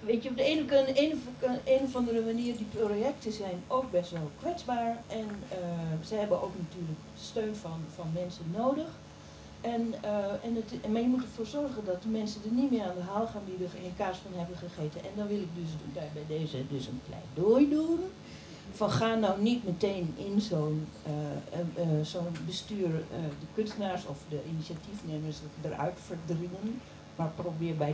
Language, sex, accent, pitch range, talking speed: Dutch, female, Dutch, 160-220 Hz, 185 wpm